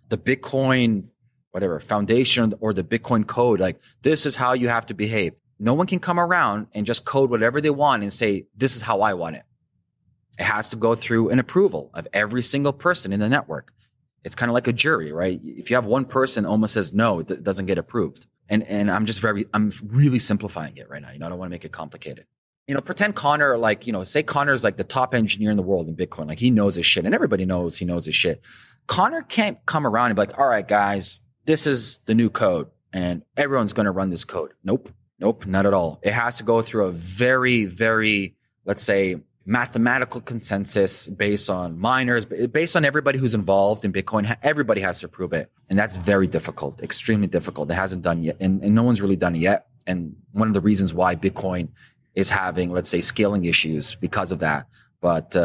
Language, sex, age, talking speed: English, male, 30-49, 225 wpm